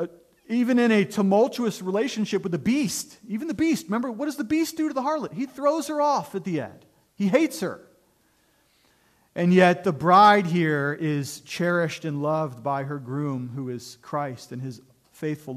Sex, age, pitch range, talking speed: male, 40-59, 140-190 Hz, 185 wpm